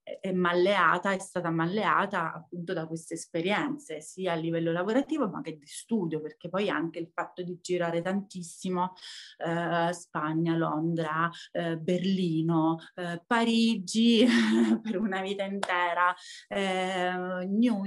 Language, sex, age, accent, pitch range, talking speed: Italian, female, 30-49, native, 170-205 Hz, 130 wpm